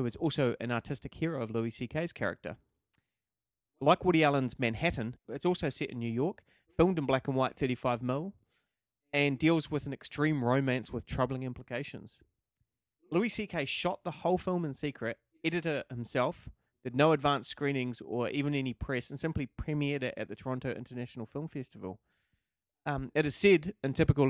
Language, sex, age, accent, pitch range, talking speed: English, male, 30-49, Australian, 120-145 Hz, 175 wpm